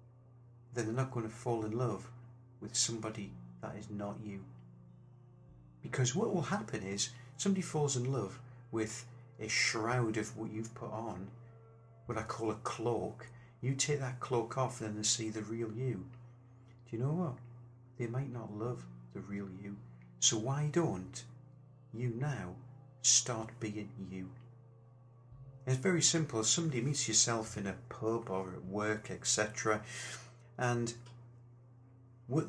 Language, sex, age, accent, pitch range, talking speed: English, male, 40-59, British, 110-125 Hz, 150 wpm